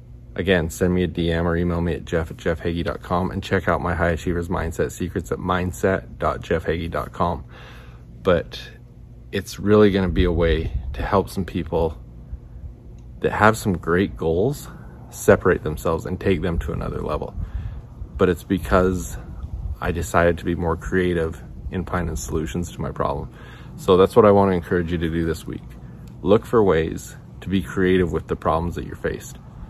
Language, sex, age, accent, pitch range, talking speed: English, male, 30-49, American, 80-95 Hz, 170 wpm